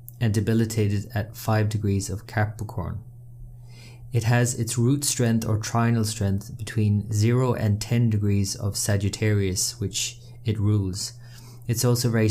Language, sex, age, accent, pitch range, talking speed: English, male, 20-39, Irish, 105-120 Hz, 135 wpm